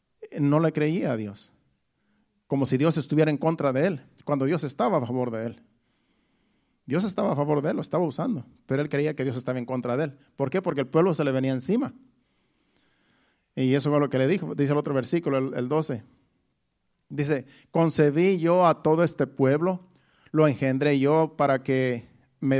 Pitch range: 135-170 Hz